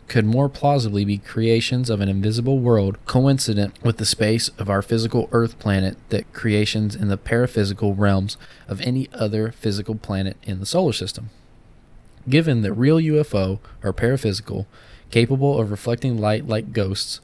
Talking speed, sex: 155 wpm, male